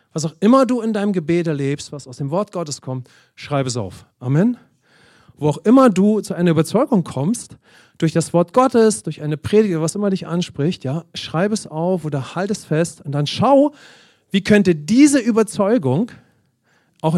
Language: English